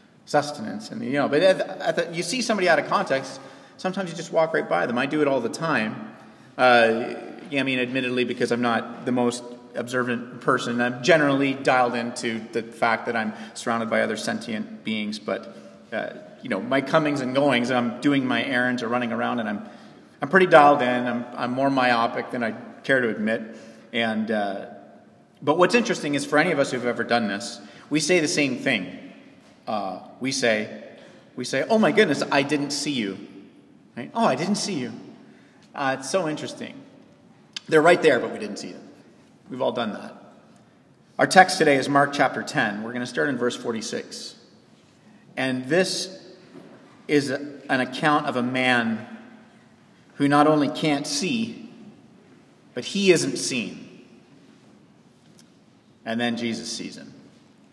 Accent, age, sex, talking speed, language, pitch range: American, 30-49, male, 180 wpm, English, 120-155 Hz